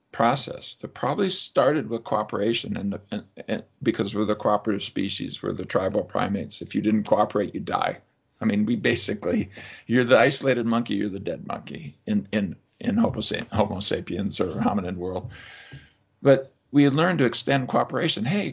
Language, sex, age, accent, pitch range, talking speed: English, male, 50-69, American, 110-140 Hz, 160 wpm